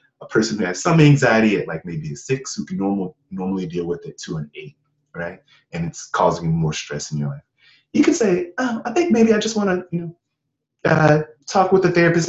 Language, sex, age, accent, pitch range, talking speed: English, male, 30-49, American, 100-160 Hz, 240 wpm